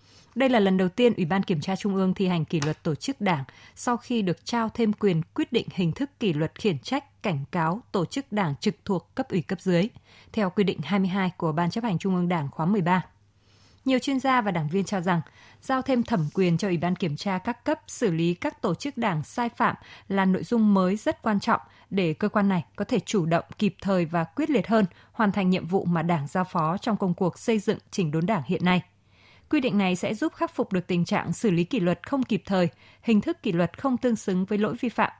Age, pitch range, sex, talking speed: 20-39, 170-225 Hz, female, 255 wpm